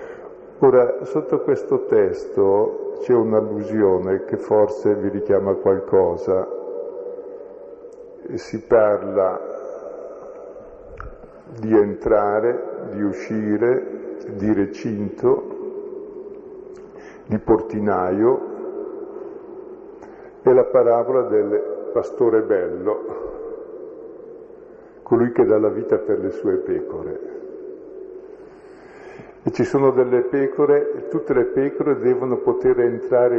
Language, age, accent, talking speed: Italian, 50-69, native, 85 wpm